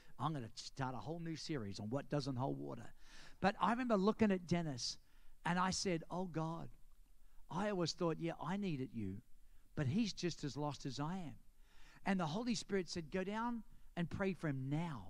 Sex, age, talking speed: male, 50-69, 205 wpm